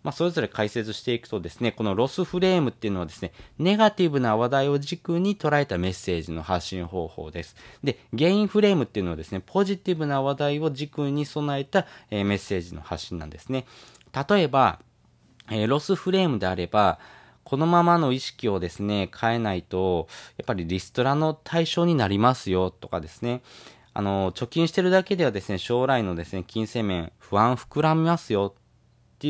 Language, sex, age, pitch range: Japanese, male, 20-39, 100-150 Hz